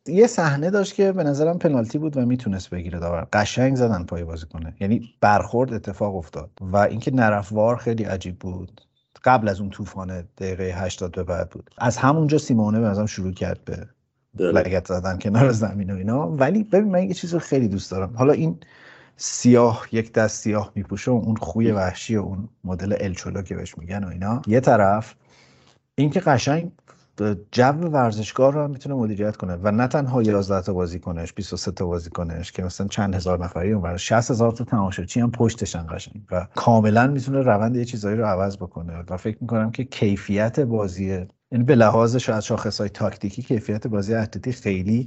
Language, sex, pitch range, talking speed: Persian, male, 95-120 Hz, 180 wpm